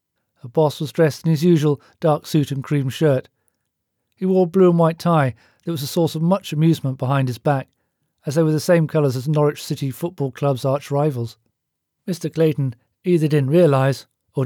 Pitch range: 130-160 Hz